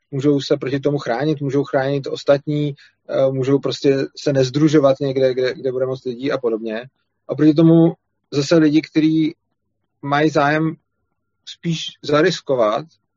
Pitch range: 120-145 Hz